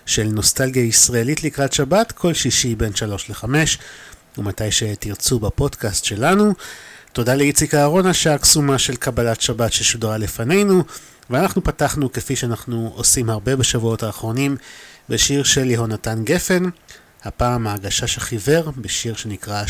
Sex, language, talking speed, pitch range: male, Hebrew, 120 wpm, 110-140 Hz